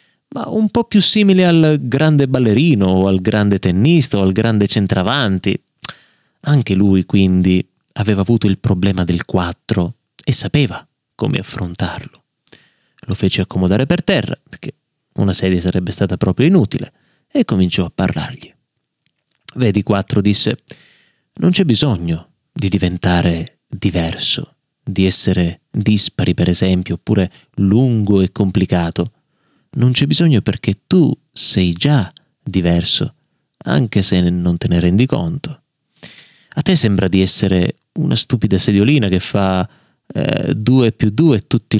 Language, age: Italian, 30-49